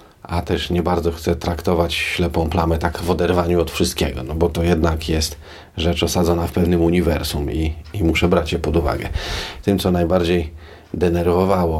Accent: native